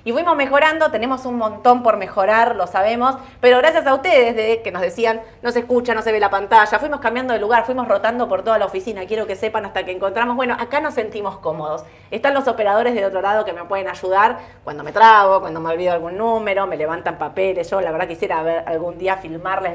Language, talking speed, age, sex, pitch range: Spanish, 230 wpm, 20-39, female, 190-240 Hz